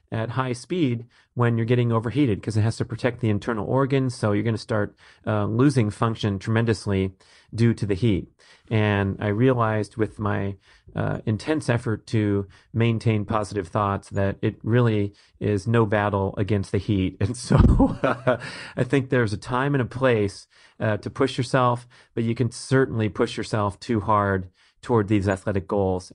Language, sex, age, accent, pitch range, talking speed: English, male, 30-49, American, 100-115 Hz, 170 wpm